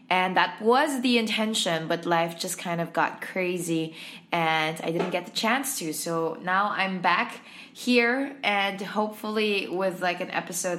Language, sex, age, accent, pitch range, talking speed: English, female, 20-39, Filipino, 170-225 Hz, 165 wpm